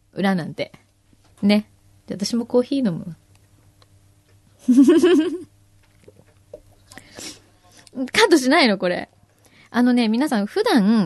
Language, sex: Japanese, female